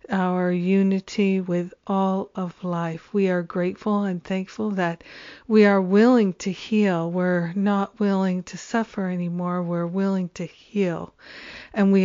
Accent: American